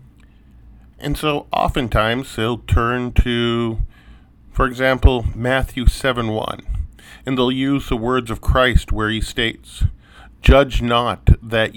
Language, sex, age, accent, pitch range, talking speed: English, male, 40-59, American, 95-125 Hz, 115 wpm